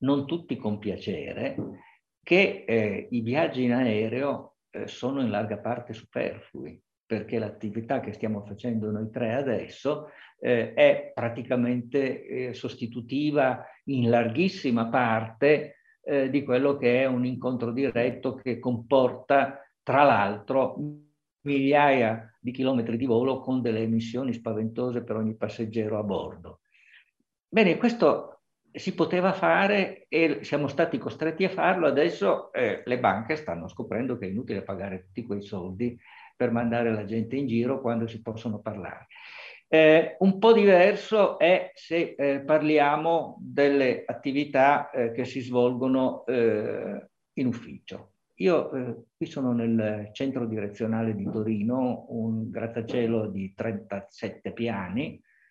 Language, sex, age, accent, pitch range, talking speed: Italian, male, 50-69, native, 115-140 Hz, 135 wpm